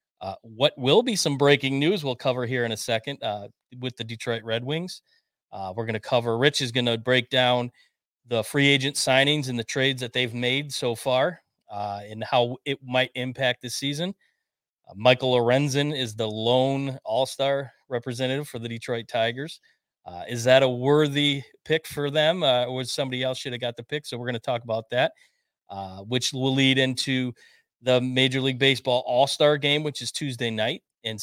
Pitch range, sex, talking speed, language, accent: 120-140 Hz, male, 200 wpm, English, American